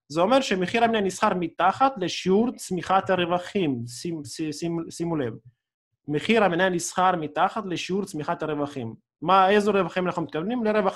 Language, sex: Hebrew, male